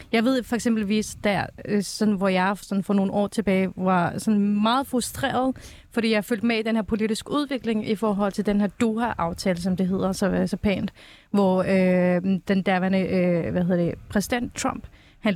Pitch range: 190-225 Hz